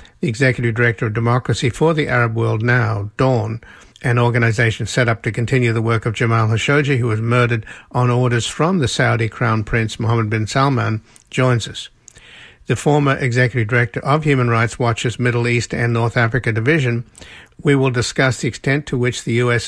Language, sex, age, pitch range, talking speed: English, male, 60-79, 115-130 Hz, 185 wpm